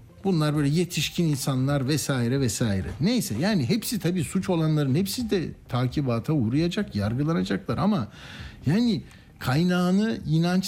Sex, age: male, 60-79